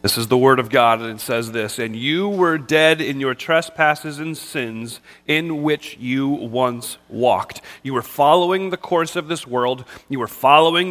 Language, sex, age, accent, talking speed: English, male, 30-49, American, 195 wpm